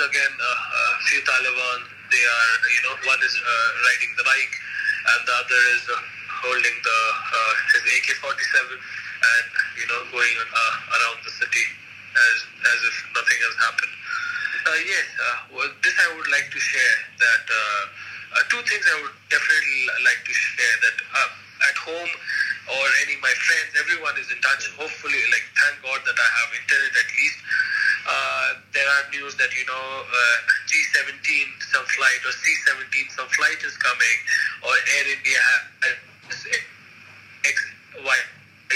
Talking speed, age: 160 wpm, 20-39